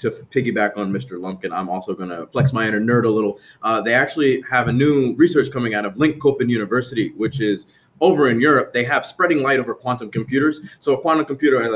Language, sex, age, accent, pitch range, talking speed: English, male, 20-39, American, 105-135 Hz, 230 wpm